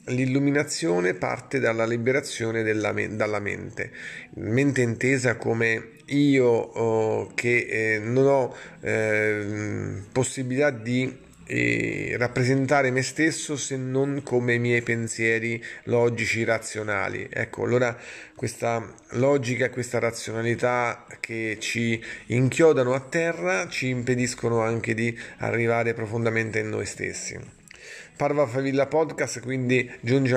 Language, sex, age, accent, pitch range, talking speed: Italian, male, 30-49, native, 115-140 Hz, 105 wpm